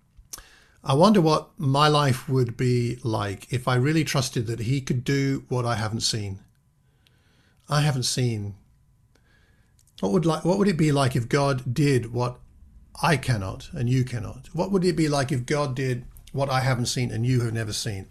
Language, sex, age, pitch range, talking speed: English, male, 50-69, 115-150 Hz, 190 wpm